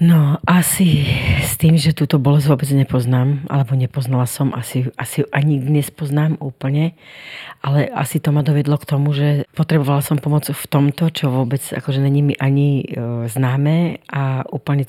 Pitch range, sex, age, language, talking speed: 135-150 Hz, female, 40-59, Slovak, 160 wpm